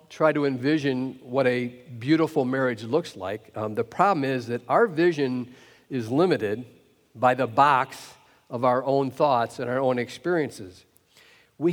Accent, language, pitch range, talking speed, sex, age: American, English, 130-170 Hz, 155 wpm, male, 50-69